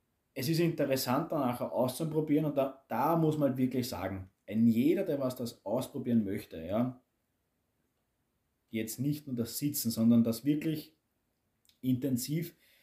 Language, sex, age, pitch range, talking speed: German, male, 30-49, 120-160 Hz, 135 wpm